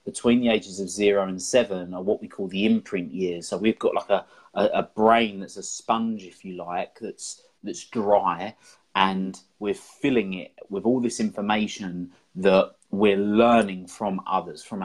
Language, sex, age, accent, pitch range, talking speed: English, male, 30-49, British, 95-125 Hz, 180 wpm